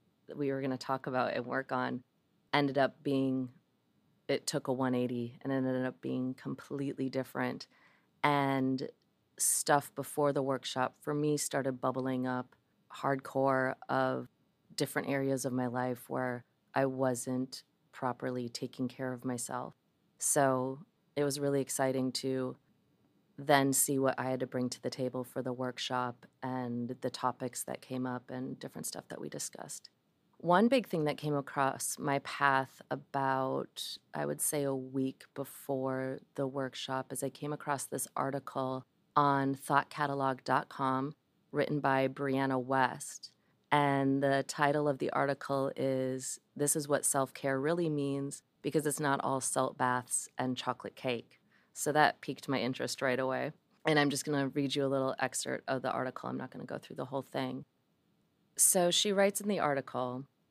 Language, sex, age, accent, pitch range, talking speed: English, female, 30-49, American, 130-140 Hz, 165 wpm